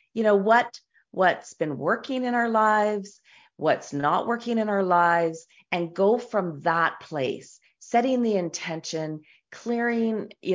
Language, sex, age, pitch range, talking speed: English, female, 40-59, 150-200 Hz, 140 wpm